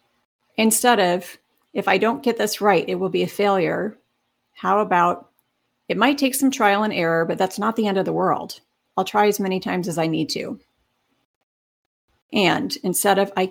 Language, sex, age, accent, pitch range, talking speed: English, female, 40-59, American, 170-220 Hz, 190 wpm